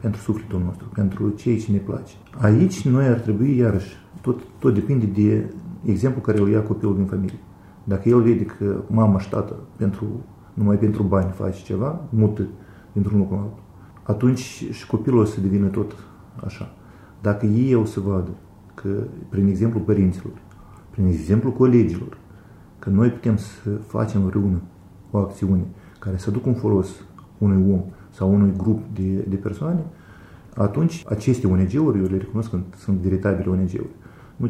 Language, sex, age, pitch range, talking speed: Romanian, male, 40-59, 95-115 Hz, 160 wpm